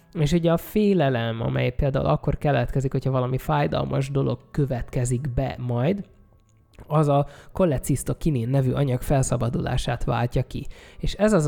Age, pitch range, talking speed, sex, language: 20-39, 125-155 Hz, 135 wpm, male, Hungarian